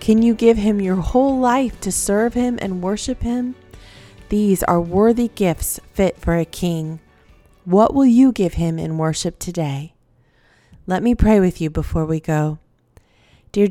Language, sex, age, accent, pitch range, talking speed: English, female, 30-49, American, 175-220 Hz, 165 wpm